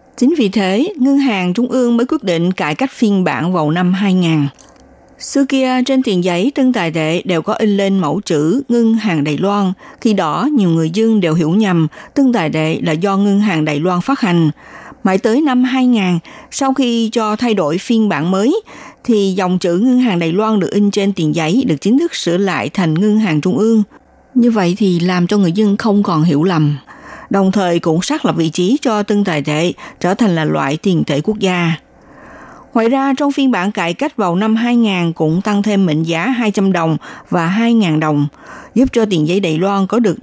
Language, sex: Vietnamese, female